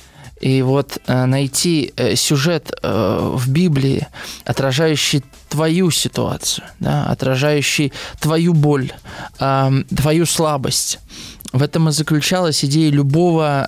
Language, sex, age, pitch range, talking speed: Russian, male, 20-39, 135-165 Hz, 90 wpm